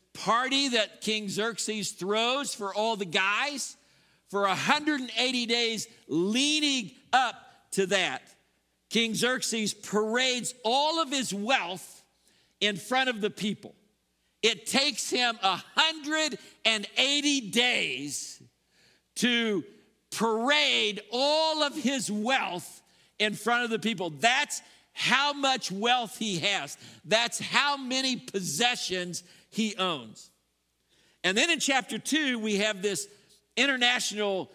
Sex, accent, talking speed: male, American, 115 wpm